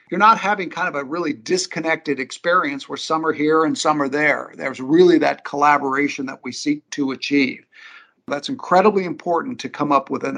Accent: American